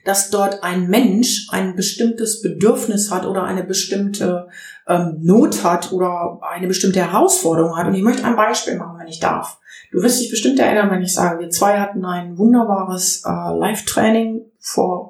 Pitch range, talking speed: 185-235 Hz, 175 wpm